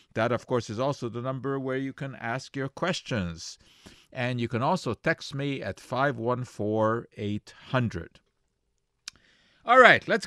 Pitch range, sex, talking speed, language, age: 110-145 Hz, male, 140 wpm, English, 50-69